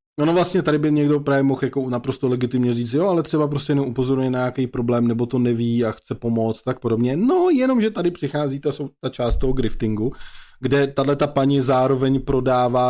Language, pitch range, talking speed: Czech, 115-130 Hz, 205 wpm